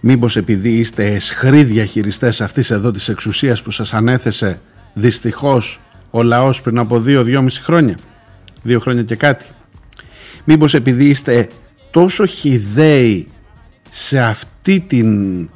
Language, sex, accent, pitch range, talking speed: Greek, male, native, 110-140 Hz, 125 wpm